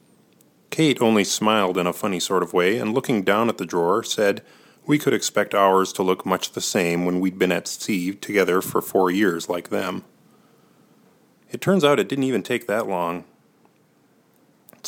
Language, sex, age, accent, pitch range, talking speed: English, male, 30-49, American, 95-115 Hz, 185 wpm